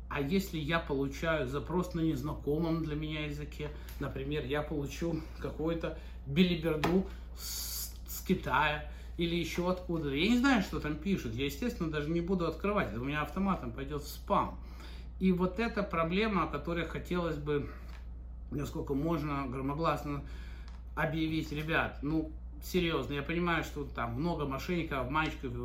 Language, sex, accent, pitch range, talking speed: Russian, male, native, 135-165 Hz, 145 wpm